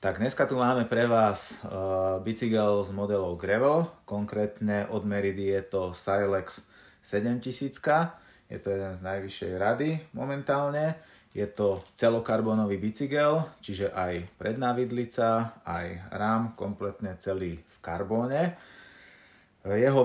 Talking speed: 115 wpm